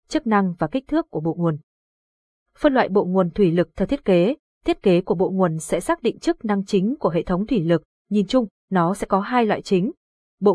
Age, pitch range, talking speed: 20-39, 180-235 Hz, 240 wpm